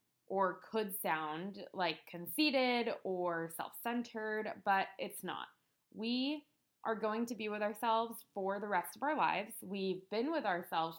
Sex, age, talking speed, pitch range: female, 20-39, 145 wpm, 180-230 Hz